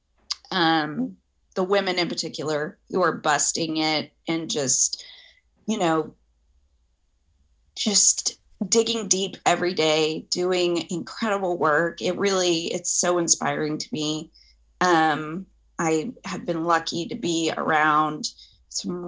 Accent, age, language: American, 30-49, English